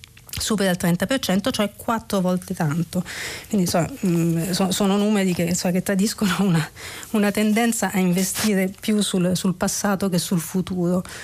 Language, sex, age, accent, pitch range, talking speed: Italian, female, 40-59, native, 165-195 Hz, 130 wpm